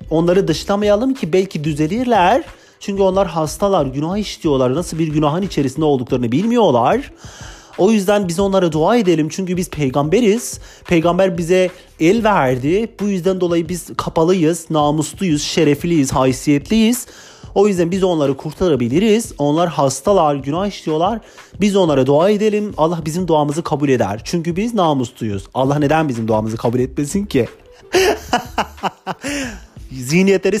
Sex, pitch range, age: male, 140-190 Hz, 40-59